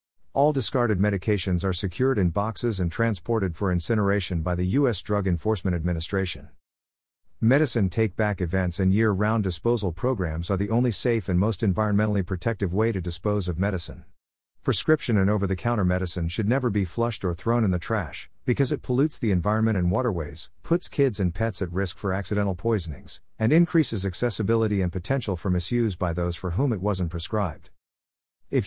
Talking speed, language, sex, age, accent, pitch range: 170 wpm, English, male, 50-69, American, 90-115 Hz